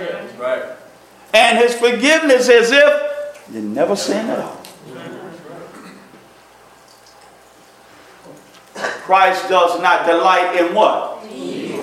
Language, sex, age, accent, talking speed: English, male, 50-69, American, 80 wpm